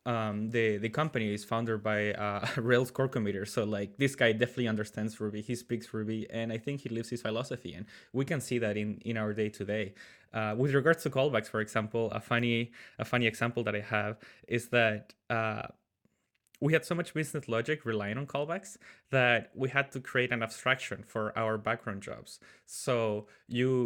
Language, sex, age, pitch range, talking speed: English, male, 20-39, 105-120 Hz, 195 wpm